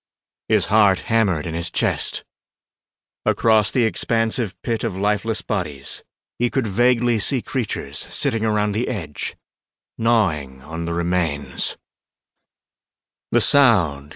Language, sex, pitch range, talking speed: English, male, 85-115 Hz, 120 wpm